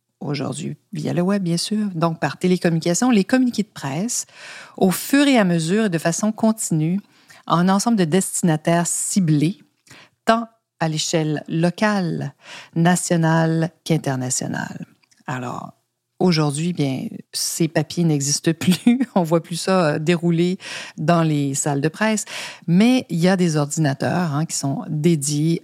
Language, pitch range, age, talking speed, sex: French, 150-190 Hz, 50-69, 145 wpm, female